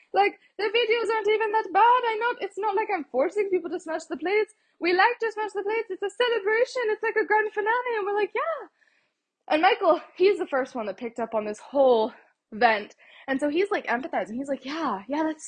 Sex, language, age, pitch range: female, English, 20-39, 245-390 Hz